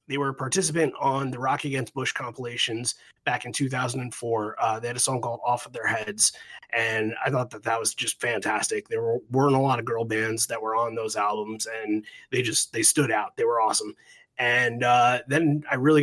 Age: 30-49